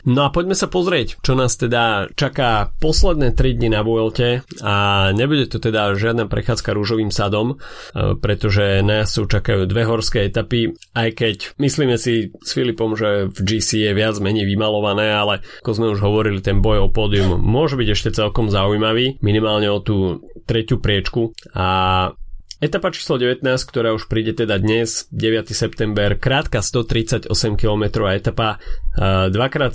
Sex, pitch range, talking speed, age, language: male, 100-115 Hz, 155 wpm, 30-49, Slovak